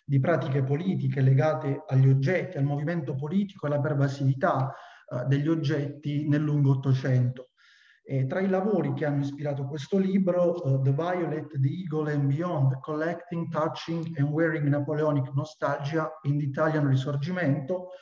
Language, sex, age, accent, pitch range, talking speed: Italian, male, 40-59, native, 135-160 Hz, 140 wpm